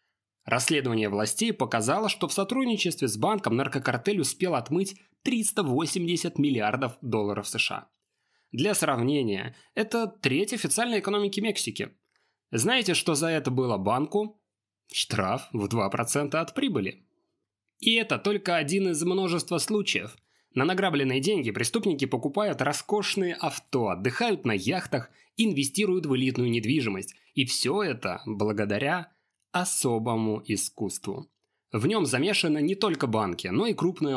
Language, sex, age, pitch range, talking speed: Russian, male, 20-39, 120-185 Hz, 120 wpm